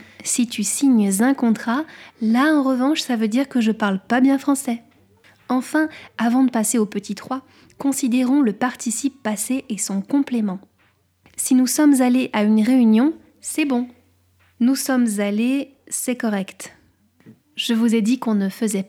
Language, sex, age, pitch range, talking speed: French, female, 20-39, 210-255 Hz, 165 wpm